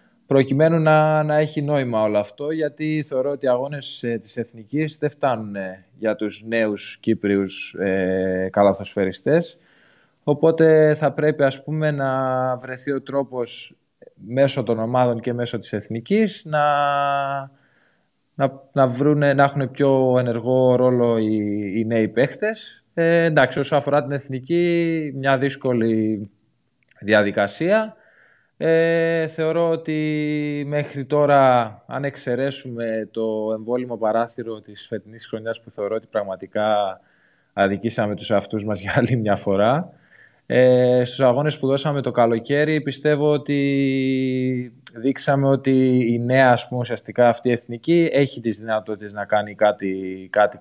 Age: 20-39